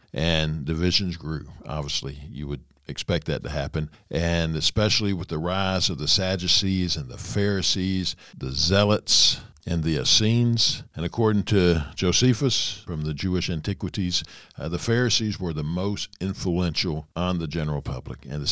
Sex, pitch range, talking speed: male, 75-100 Hz, 150 wpm